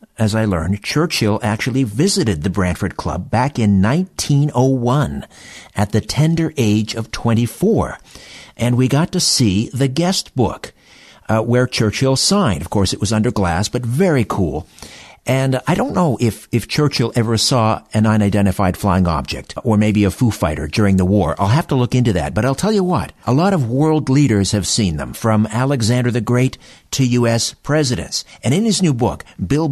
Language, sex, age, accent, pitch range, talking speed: English, male, 50-69, American, 100-135 Hz, 185 wpm